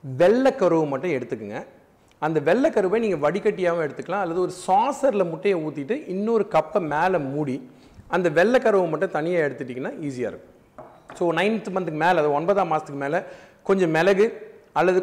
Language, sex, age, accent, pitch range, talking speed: Tamil, male, 40-59, native, 145-205 Hz, 140 wpm